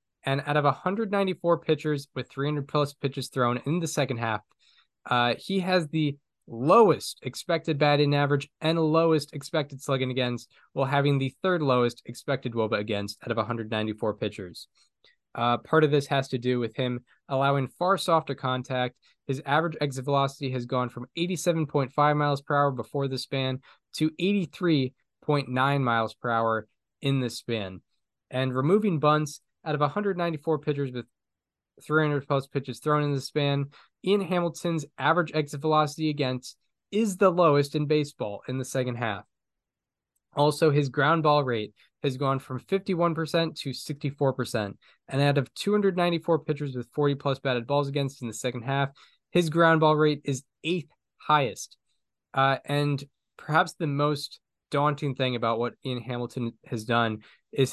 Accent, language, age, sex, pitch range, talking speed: American, English, 10-29, male, 125-155 Hz, 155 wpm